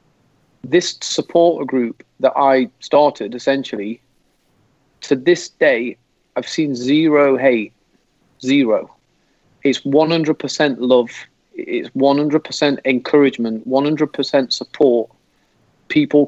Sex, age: male, 30-49